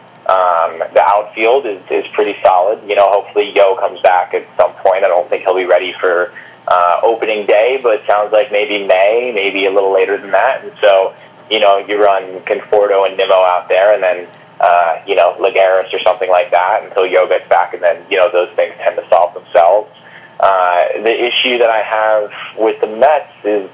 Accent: American